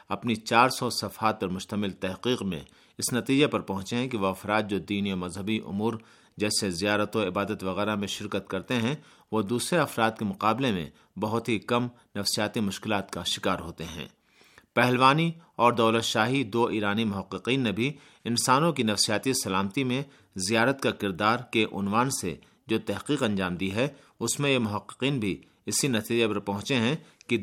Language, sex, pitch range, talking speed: Urdu, male, 100-120 Hz, 175 wpm